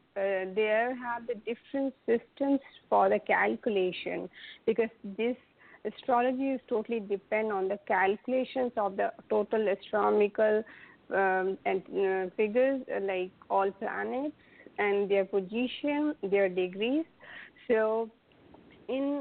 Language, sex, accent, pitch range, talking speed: English, female, Indian, 210-260 Hz, 110 wpm